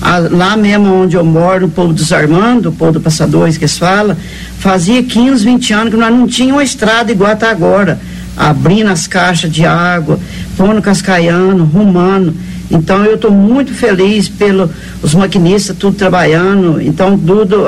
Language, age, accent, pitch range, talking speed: English, 50-69, Brazilian, 175-210 Hz, 160 wpm